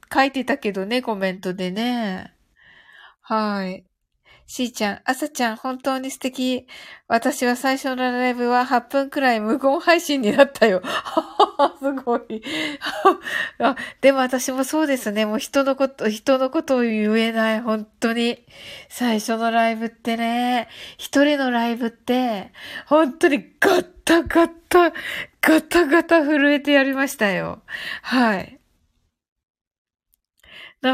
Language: Japanese